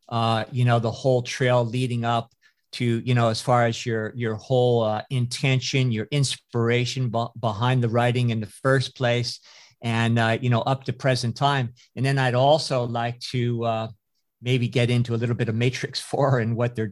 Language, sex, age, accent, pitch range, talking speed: English, male, 50-69, American, 120-140 Hz, 200 wpm